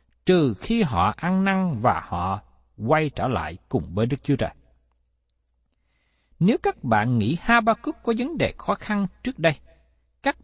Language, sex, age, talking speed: Vietnamese, male, 60-79, 160 wpm